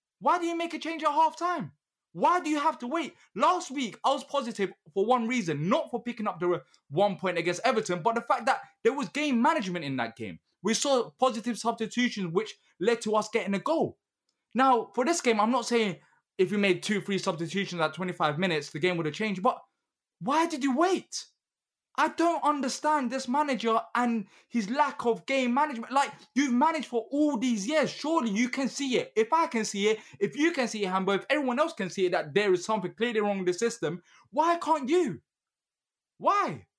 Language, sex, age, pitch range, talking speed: English, male, 20-39, 175-280 Hz, 215 wpm